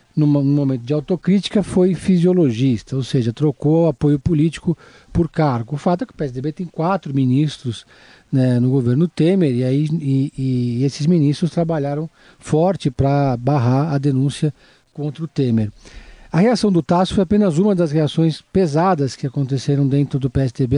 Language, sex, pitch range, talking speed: Portuguese, male, 140-175 Hz, 160 wpm